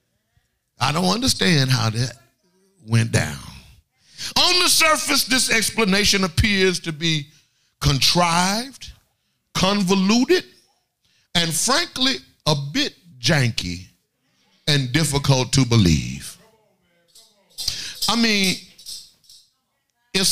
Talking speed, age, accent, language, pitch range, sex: 85 wpm, 50-69, American, English, 145-210 Hz, male